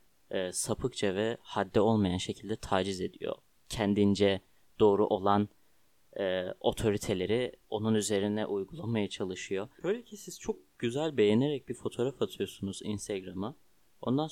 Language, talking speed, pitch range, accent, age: Turkish, 115 wpm, 100-140 Hz, native, 30-49